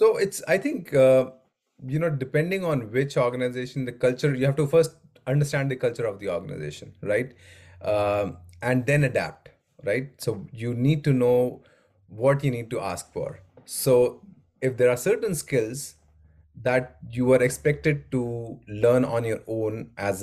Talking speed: 165 wpm